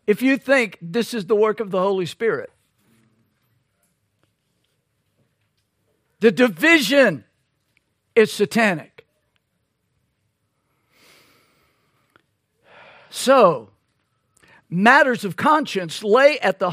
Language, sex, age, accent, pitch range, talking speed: English, male, 50-69, American, 160-235 Hz, 80 wpm